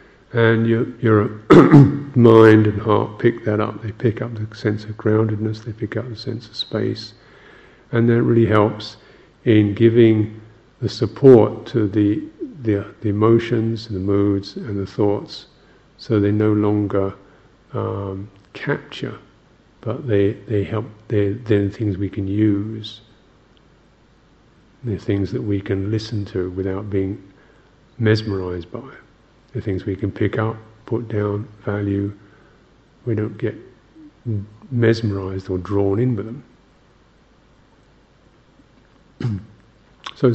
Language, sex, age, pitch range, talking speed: English, male, 50-69, 100-115 Hz, 130 wpm